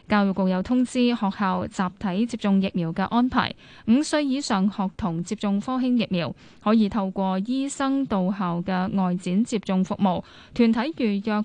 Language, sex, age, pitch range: Chinese, female, 10-29, 190-240 Hz